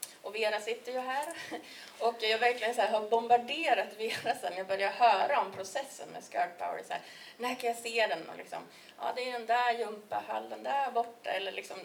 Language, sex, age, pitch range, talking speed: Swedish, female, 30-49, 185-240 Hz, 220 wpm